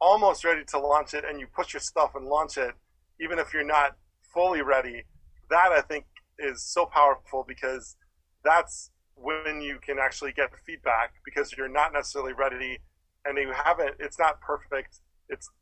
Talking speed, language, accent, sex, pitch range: 175 wpm, English, American, male, 135-155 Hz